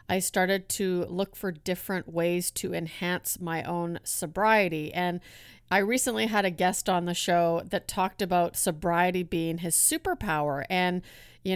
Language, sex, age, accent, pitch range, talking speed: English, female, 40-59, American, 170-195 Hz, 155 wpm